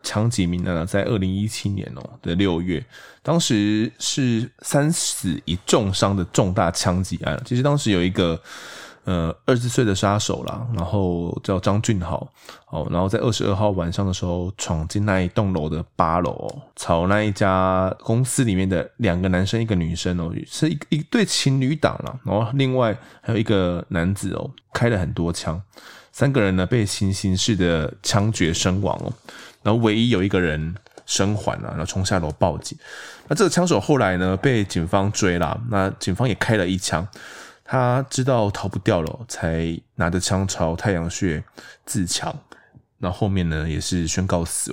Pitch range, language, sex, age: 90-115 Hz, Chinese, male, 20-39